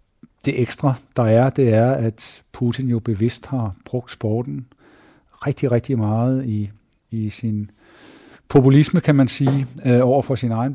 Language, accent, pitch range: Danish, native, 120-140 Hz